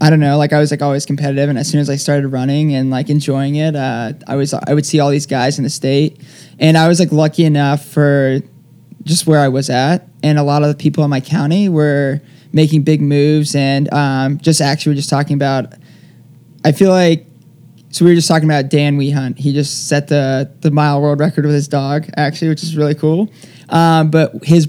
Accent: American